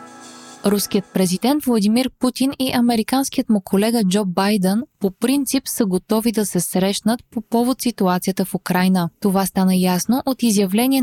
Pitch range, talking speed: 190-235 Hz, 145 wpm